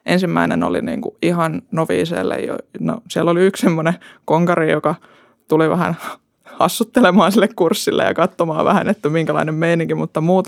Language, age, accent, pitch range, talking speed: Finnish, 20-39, native, 155-180 Hz, 145 wpm